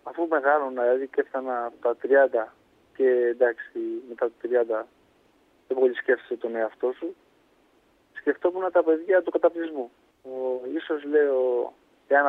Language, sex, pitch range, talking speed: Greek, male, 125-185 Hz, 130 wpm